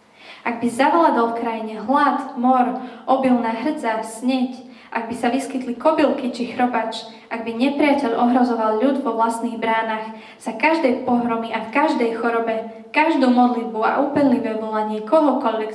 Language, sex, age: Slovak, female, 20-39